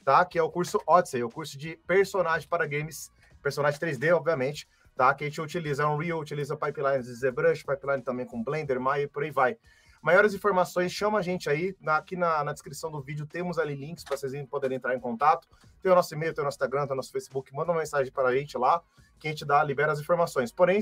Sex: male